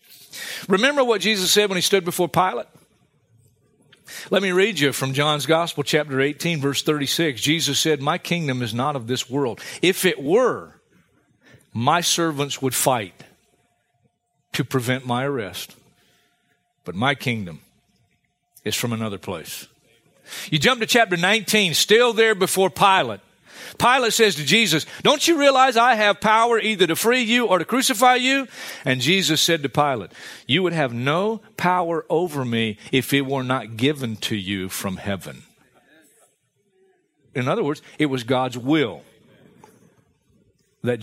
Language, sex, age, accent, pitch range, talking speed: English, male, 40-59, American, 130-190 Hz, 150 wpm